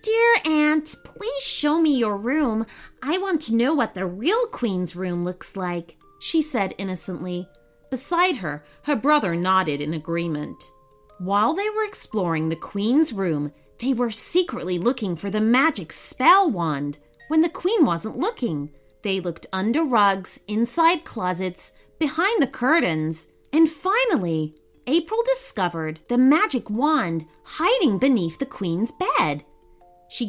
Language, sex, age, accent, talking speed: English, female, 30-49, American, 140 wpm